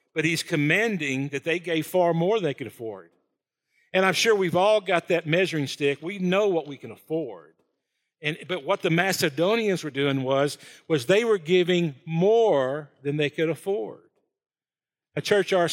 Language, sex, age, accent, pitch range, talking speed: English, male, 50-69, American, 140-180 Hz, 180 wpm